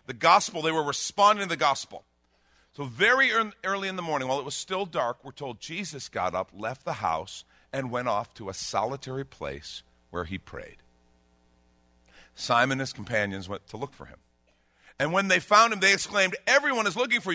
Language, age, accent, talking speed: English, 50-69, American, 195 wpm